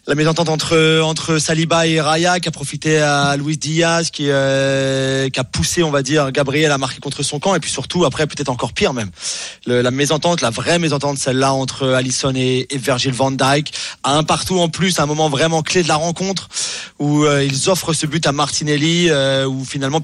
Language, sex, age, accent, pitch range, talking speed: French, male, 30-49, French, 135-160 Hz, 220 wpm